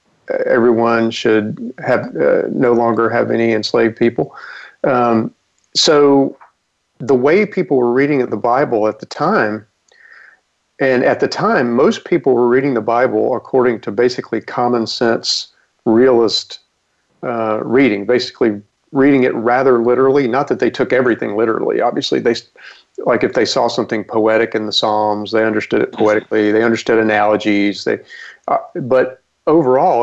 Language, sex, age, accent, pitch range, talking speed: English, male, 40-59, American, 110-130 Hz, 145 wpm